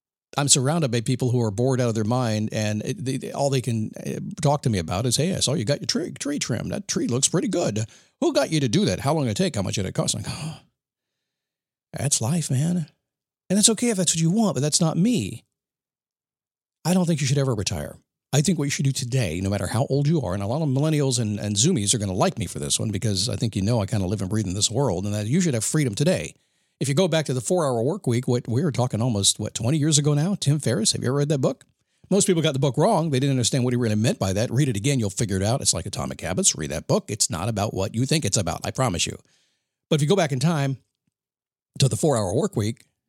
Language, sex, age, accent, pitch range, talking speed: English, male, 50-69, American, 115-155 Hz, 290 wpm